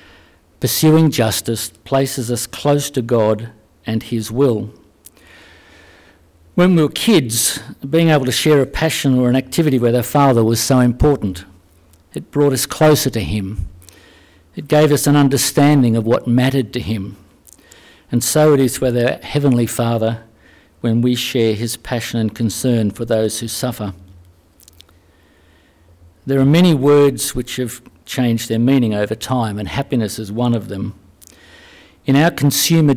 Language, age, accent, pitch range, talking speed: English, 60-79, Australian, 105-135 Hz, 155 wpm